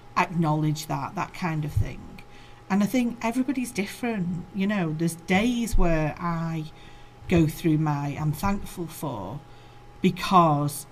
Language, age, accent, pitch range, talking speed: English, 40-59, British, 155-190 Hz, 130 wpm